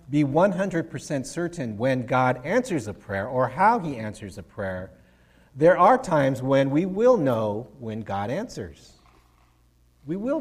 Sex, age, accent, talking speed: male, 50-69, American, 150 wpm